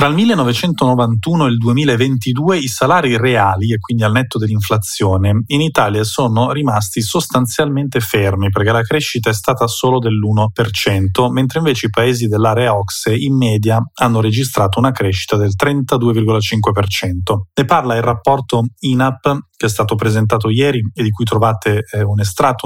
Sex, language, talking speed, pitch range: male, Italian, 150 wpm, 105-130 Hz